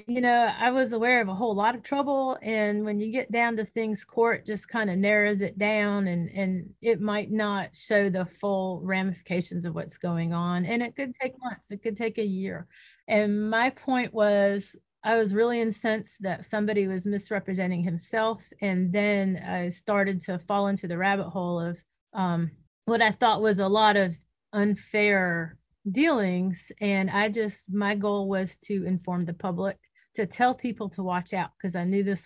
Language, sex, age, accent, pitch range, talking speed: English, female, 30-49, American, 180-215 Hz, 190 wpm